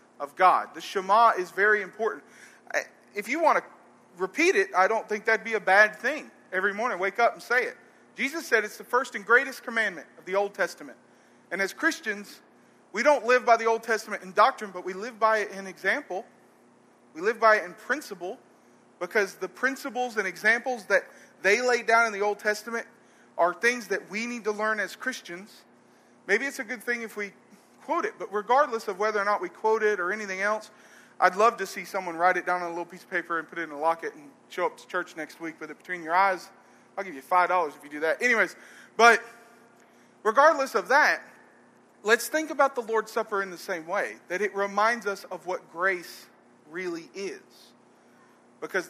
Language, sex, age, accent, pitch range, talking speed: English, male, 40-59, American, 185-235 Hz, 215 wpm